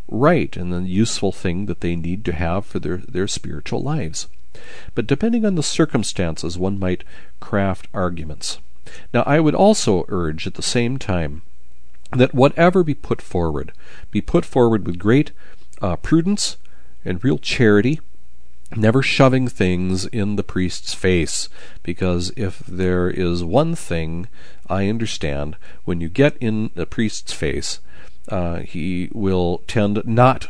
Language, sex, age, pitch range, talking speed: English, male, 50-69, 80-120 Hz, 150 wpm